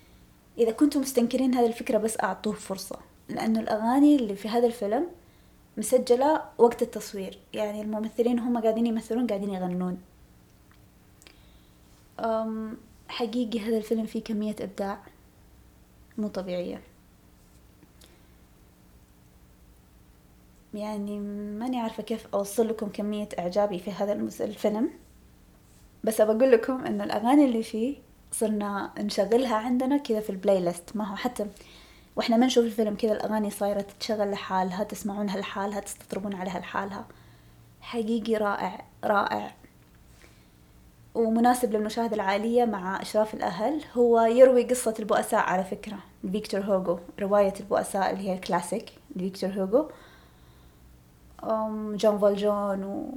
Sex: female